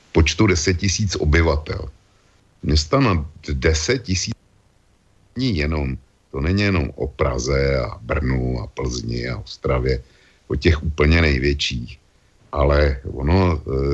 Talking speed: 110 wpm